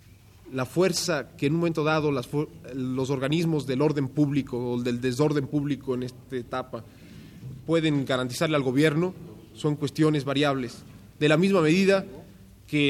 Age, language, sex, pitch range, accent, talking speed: 30-49, Spanish, male, 130-165 Hz, Mexican, 155 wpm